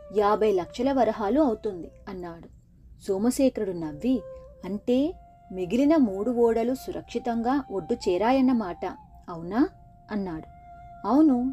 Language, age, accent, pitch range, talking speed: Telugu, 30-49, native, 185-260 Hz, 90 wpm